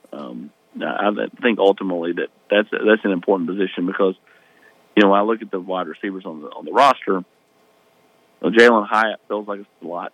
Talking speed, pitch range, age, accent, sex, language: 205 wpm, 95-115 Hz, 40-59, American, male, English